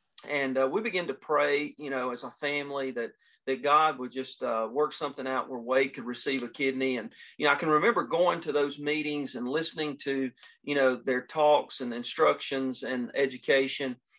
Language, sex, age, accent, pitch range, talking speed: English, male, 40-59, American, 130-145 Hz, 200 wpm